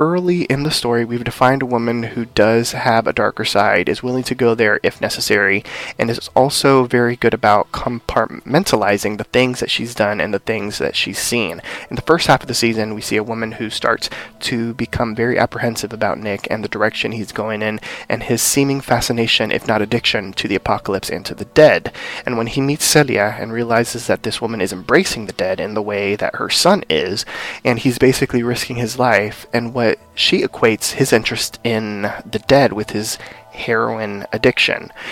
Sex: male